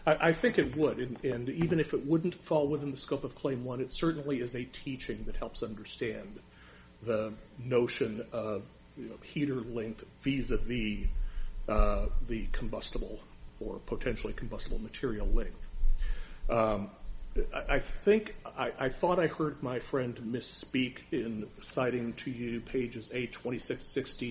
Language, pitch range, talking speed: English, 110-140 Hz, 145 wpm